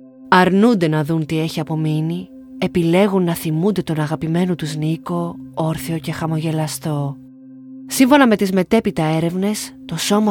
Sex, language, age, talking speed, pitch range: female, Greek, 30-49, 135 wpm, 155-190 Hz